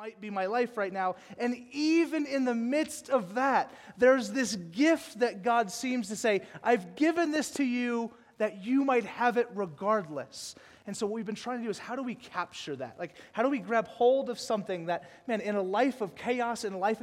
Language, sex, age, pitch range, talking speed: English, male, 30-49, 170-220 Hz, 225 wpm